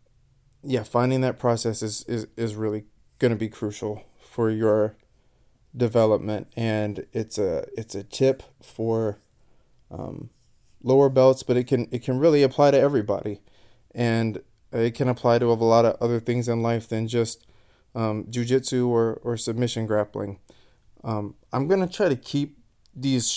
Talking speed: 155 wpm